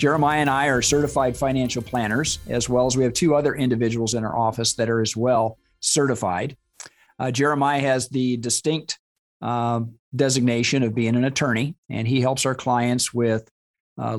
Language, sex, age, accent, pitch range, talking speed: English, male, 50-69, American, 115-140 Hz, 175 wpm